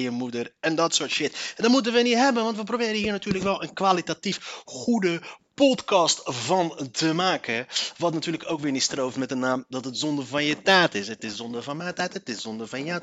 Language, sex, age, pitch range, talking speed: Dutch, male, 30-49, 145-195 Hz, 240 wpm